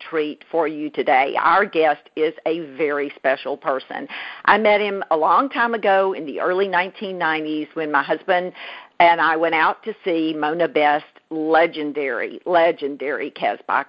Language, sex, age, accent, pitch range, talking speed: English, female, 50-69, American, 150-180 Hz, 155 wpm